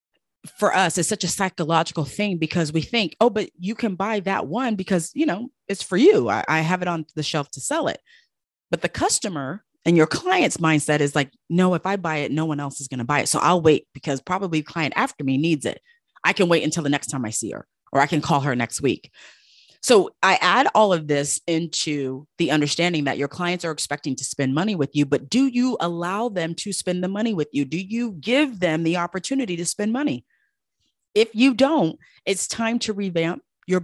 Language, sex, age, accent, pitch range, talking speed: English, female, 30-49, American, 150-210 Hz, 230 wpm